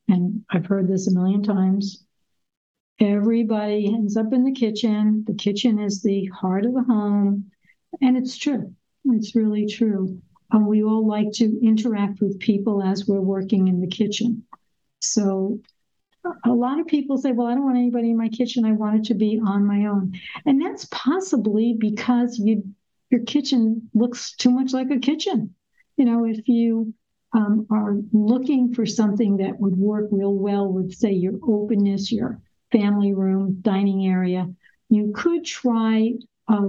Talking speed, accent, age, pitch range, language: 165 wpm, American, 60-79, 200-235 Hz, English